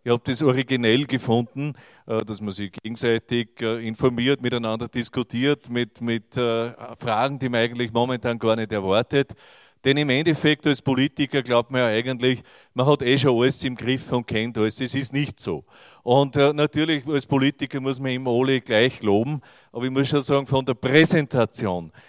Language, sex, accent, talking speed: German, male, Austrian, 170 wpm